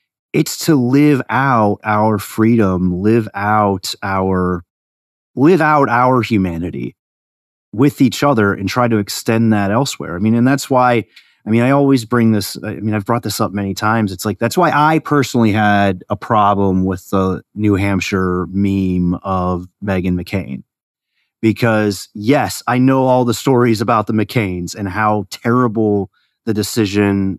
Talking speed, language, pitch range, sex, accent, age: 160 wpm, English, 95-115 Hz, male, American, 30-49